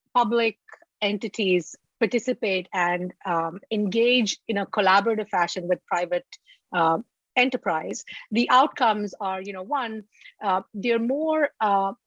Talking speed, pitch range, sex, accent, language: 115 wpm, 185-230 Hz, female, Indian, English